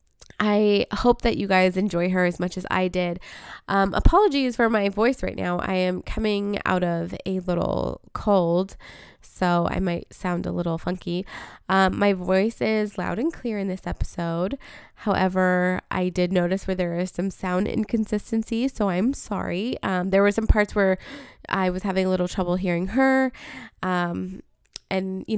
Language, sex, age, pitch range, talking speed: English, female, 20-39, 180-210 Hz, 175 wpm